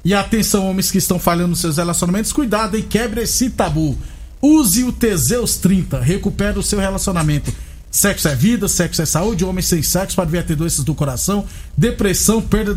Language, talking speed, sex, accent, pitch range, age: Portuguese, 185 wpm, male, Brazilian, 180-220 Hz, 50-69